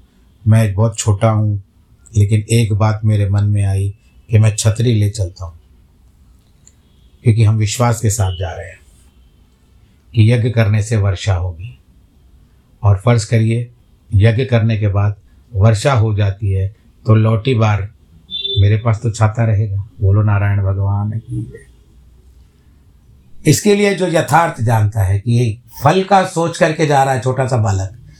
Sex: male